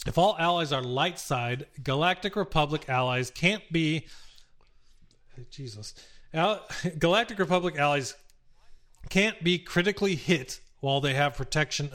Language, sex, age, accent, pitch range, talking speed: English, male, 30-49, American, 135-175 Hz, 115 wpm